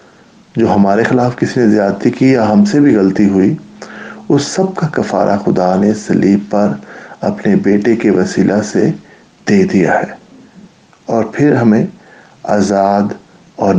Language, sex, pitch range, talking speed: English, male, 100-125 Hz, 140 wpm